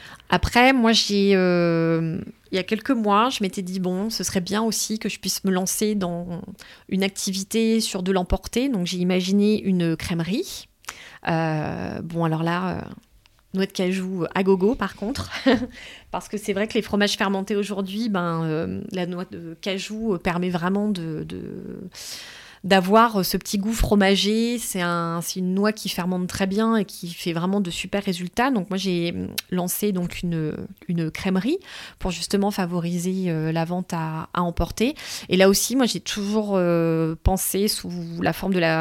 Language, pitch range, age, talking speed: French, 175-205 Hz, 30-49, 180 wpm